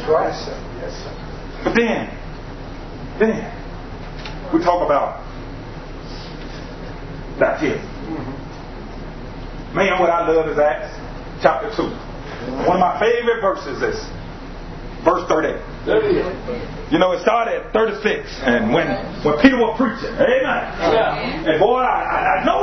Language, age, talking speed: English, 30-49, 115 wpm